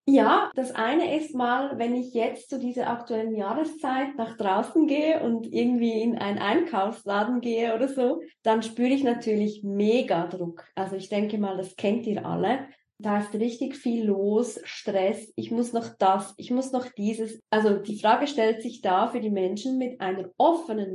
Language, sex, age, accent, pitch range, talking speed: German, female, 20-39, German, 200-250 Hz, 180 wpm